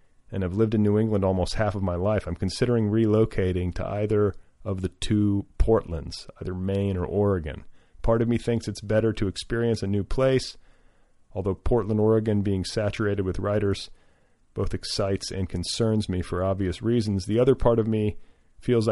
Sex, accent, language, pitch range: male, American, English, 95-110 Hz